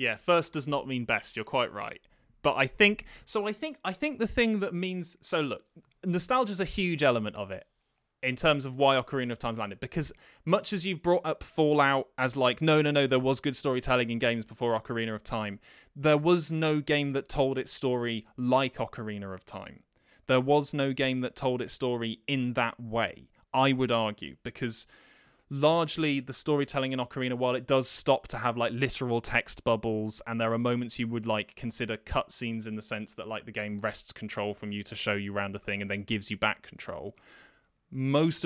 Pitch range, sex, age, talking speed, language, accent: 115-145 Hz, male, 20-39, 210 wpm, English, British